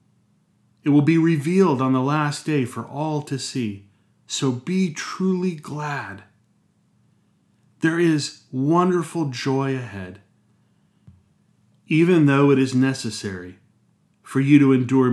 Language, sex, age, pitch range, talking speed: English, male, 30-49, 110-150 Hz, 120 wpm